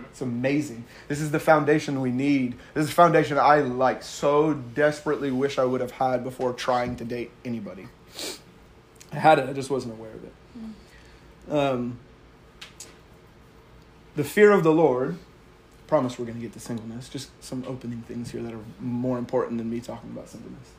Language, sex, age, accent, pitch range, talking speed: English, male, 30-49, American, 130-170 Hz, 180 wpm